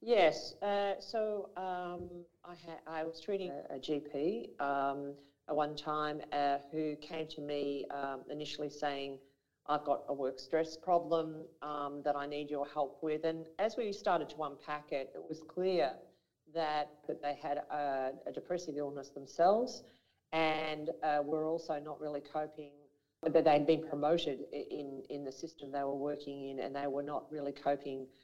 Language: English